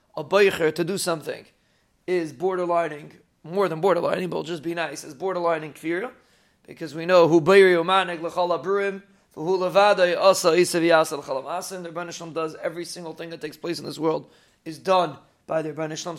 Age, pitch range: 30-49, 160-185 Hz